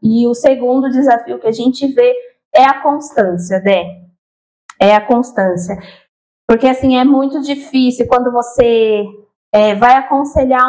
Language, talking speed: Portuguese, 135 wpm